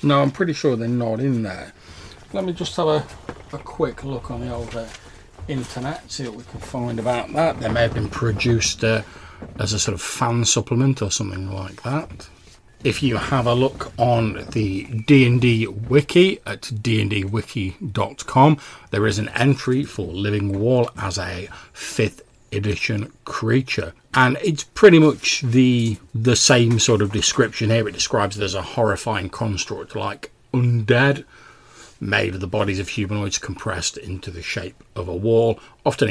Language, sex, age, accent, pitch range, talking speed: English, male, 40-59, British, 100-125 Hz, 165 wpm